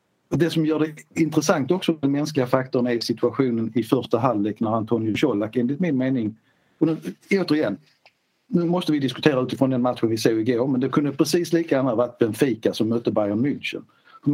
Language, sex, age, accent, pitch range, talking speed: Swedish, male, 60-79, native, 120-150 Hz, 195 wpm